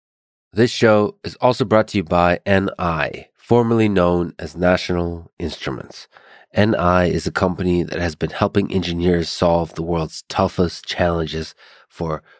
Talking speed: 140 wpm